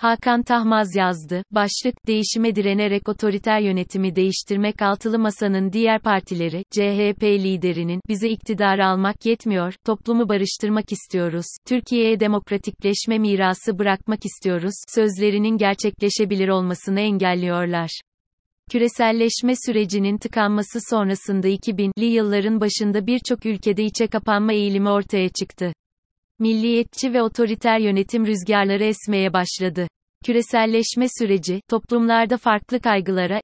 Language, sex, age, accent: Turkish, female, 30-49, native